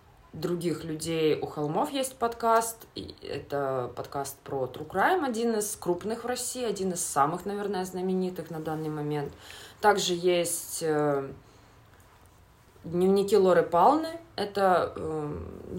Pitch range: 150-210 Hz